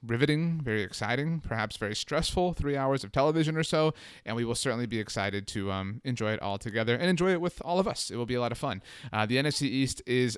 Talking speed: 250 wpm